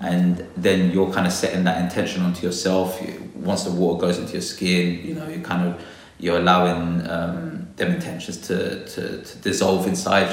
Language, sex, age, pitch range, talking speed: English, male, 20-39, 90-95 Hz, 190 wpm